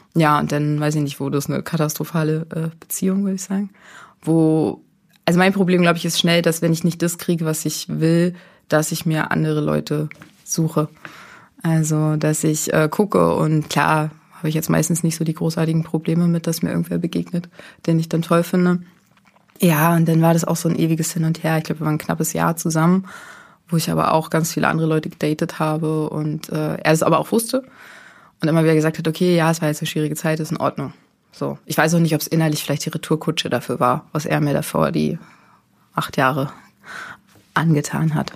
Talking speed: 215 wpm